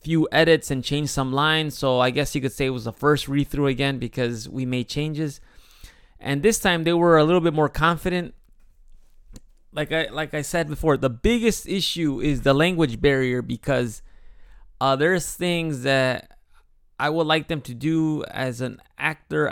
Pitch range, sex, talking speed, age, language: 125-155 Hz, male, 185 wpm, 20-39, English